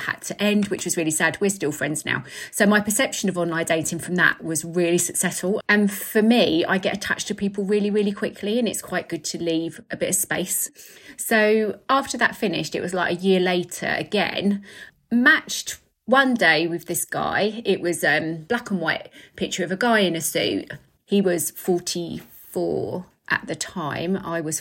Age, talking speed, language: 30-49, 200 wpm, English